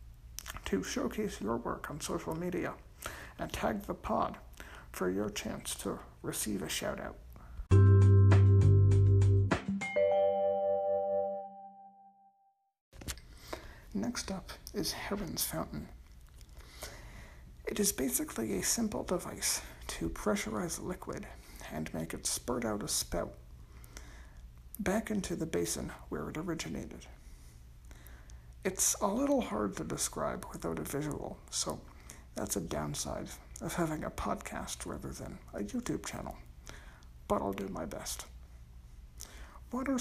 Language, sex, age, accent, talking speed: English, male, 60-79, American, 110 wpm